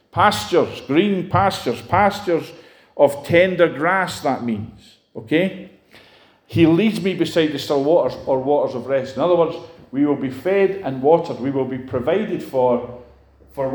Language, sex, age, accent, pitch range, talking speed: English, male, 40-59, British, 130-170 Hz, 155 wpm